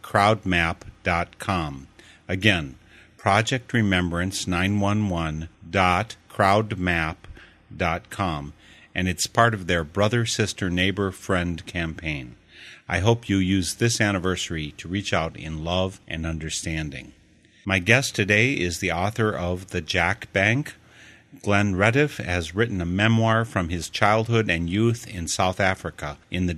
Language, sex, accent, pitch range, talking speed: English, male, American, 85-105 Hz, 120 wpm